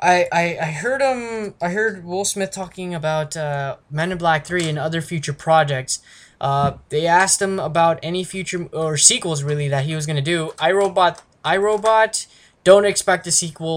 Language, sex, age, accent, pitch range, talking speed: English, male, 10-29, American, 145-185 Hz, 190 wpm